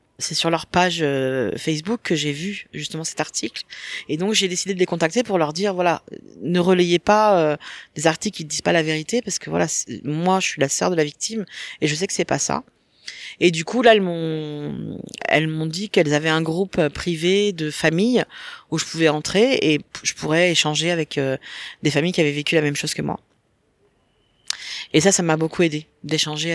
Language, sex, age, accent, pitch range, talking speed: French, female, 40-59, French, 150-195 Hz, 210 wpm